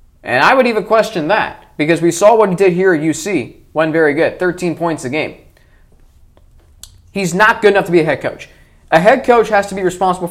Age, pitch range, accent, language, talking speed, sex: 20-39, 165-215 Hz, American, English, 220 wpm, male